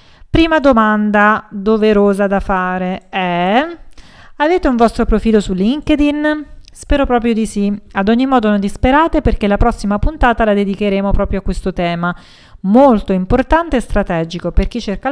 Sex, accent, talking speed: female, native, 150 wpm